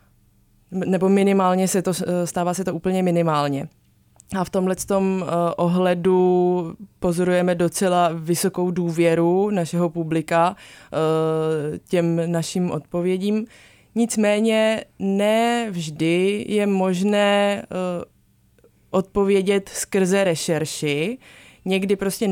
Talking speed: 85 wpm